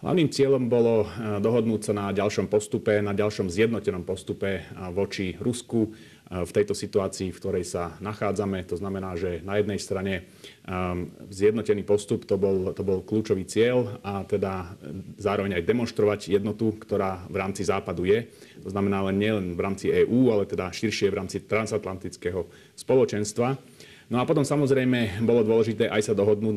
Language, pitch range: Slovak, 95-110 Hz